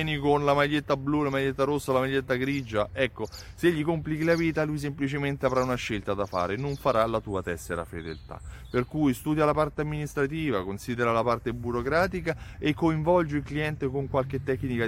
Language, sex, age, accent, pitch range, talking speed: Italian, male, 30-49, native, 120-165 Hz, 190 wpm